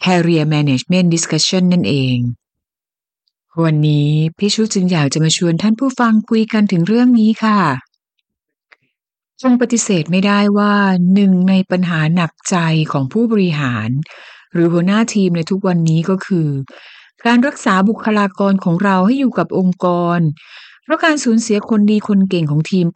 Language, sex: Thai, female